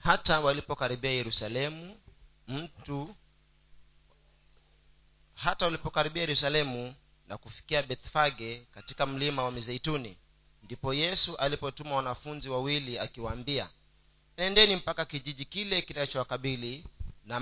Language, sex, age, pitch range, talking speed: Swahili, male, 40-59, 125-155 Hz, 95 wpm